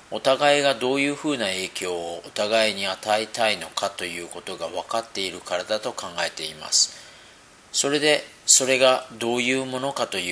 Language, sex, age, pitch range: Japanese, male, 40-59, 100-130 Hz